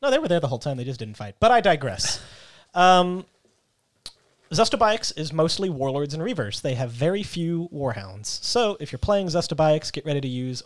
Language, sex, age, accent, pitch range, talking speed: English, male, 30-49, American, 120-165 Hz, 195 wpm